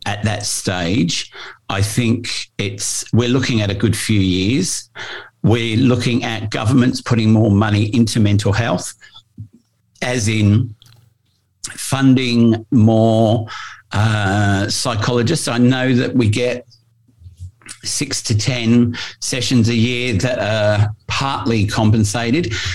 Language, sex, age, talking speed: English, male, 50-69, 115 wpm